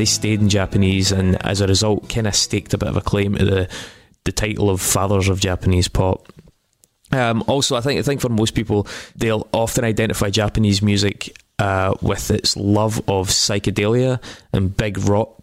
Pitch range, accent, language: 95-110 Hz, British, English